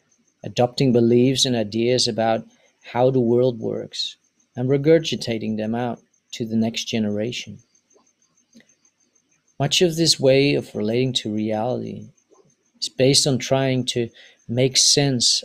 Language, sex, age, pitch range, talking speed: English, male, 40-59, 115-130 Hz, 125 wpm